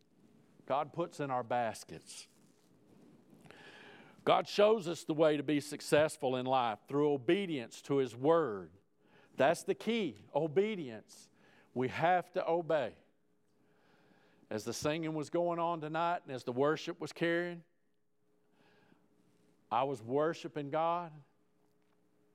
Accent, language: American, English